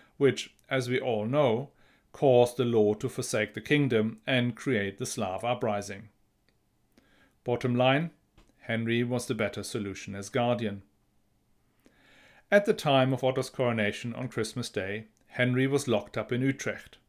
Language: English